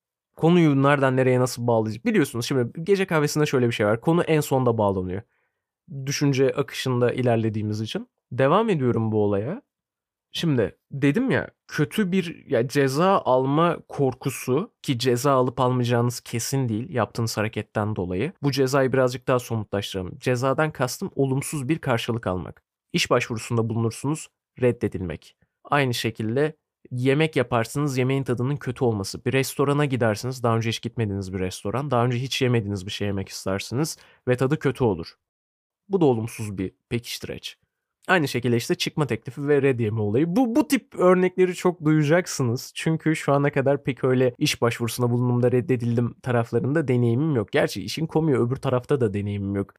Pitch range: 115-145 Hz